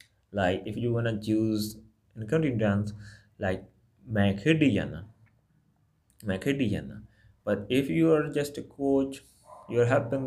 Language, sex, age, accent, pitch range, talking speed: English, male, 20-39, Indian, 105-135 Hz, 110 wpm